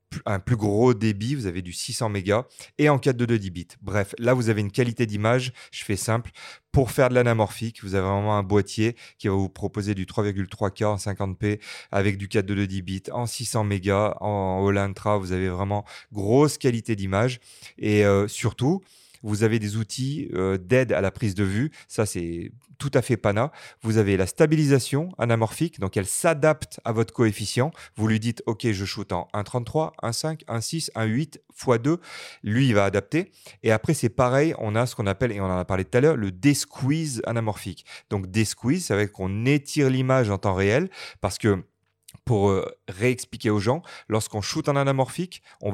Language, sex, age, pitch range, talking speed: French, male, 30-49, 100-130 Hz, 200 wpm